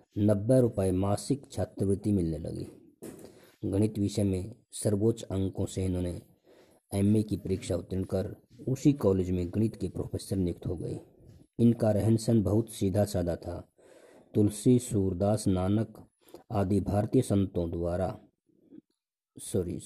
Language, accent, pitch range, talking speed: Hindi, native, 95-115 Hz, 125 wpm